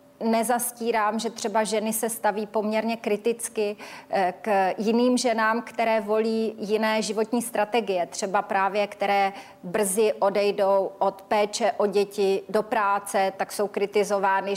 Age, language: 30-49, Czech